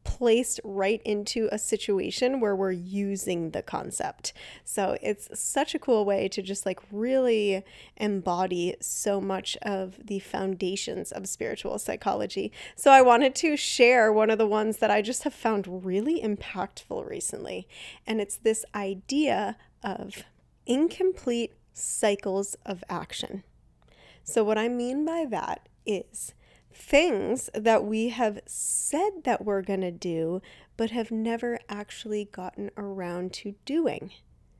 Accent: American